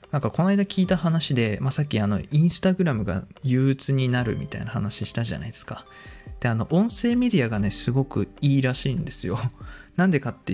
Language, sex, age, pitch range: Japanese, male, 20-39, 105-145 Hz